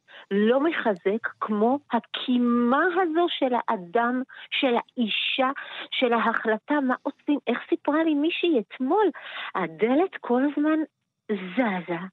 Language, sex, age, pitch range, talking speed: Hebrew, female, 40-59, 205-310 Hz, 110 wpm